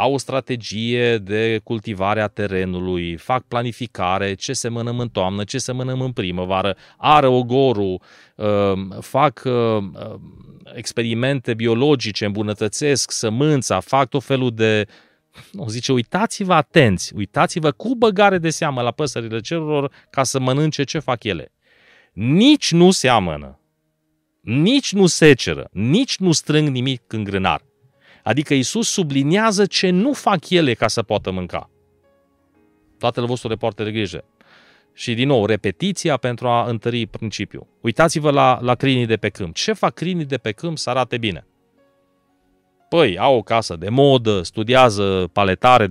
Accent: native